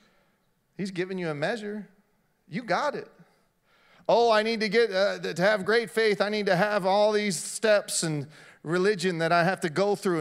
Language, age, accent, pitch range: English, 40-59, American, 185-280 Hz